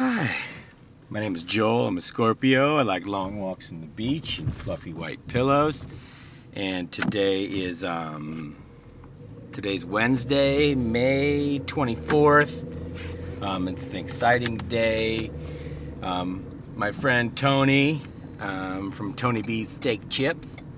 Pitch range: 95-125 Hz